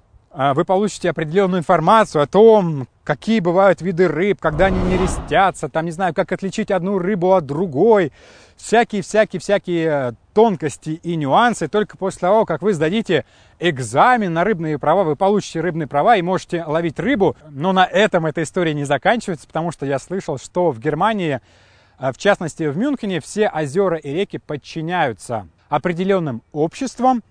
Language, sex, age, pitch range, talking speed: Russian, male, 20-39, 150-200 Hz, 150 wpm